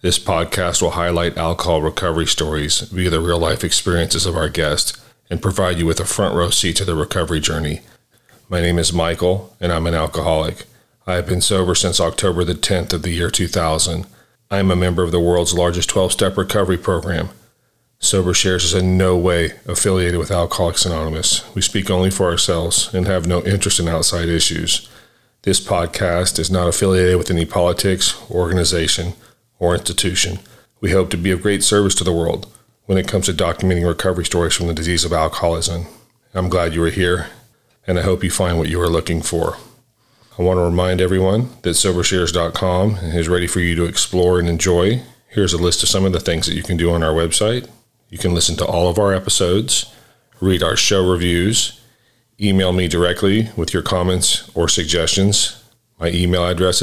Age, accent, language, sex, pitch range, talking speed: 40-59, American, English, male, 85-100 Hz, 190 wpm